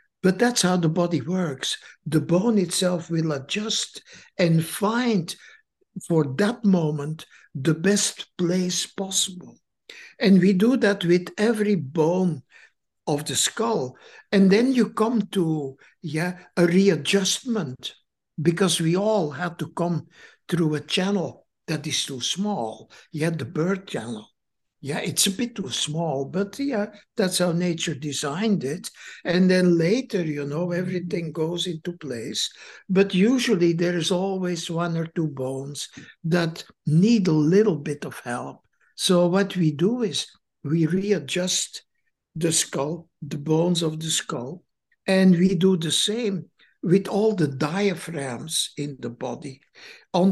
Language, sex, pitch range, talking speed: English, male, 155-195 Hz, 145 wpm